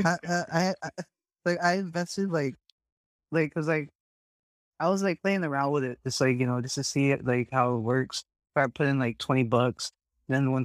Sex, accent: male, American